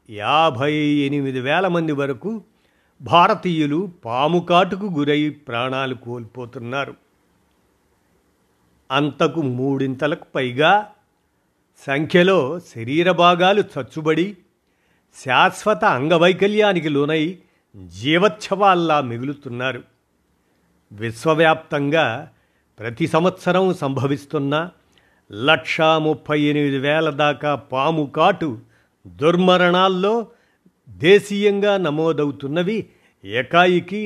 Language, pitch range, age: Telugu, 130-175 Hz, 50-69